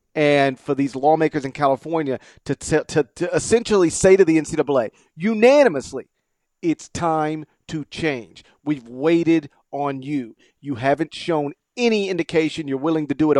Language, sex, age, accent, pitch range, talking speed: English, male, 40-59, American, 125-165 Hz, 150 wpm